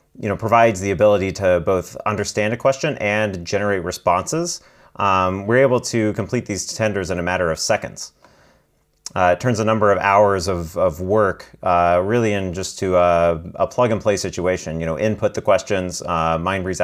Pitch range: 90-115 Hz